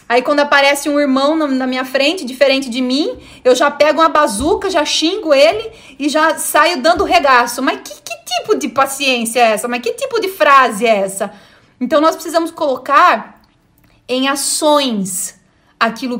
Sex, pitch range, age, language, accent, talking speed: female, 235-290 Hz, 20-39, Portuguese, Brazilian, 170 wpm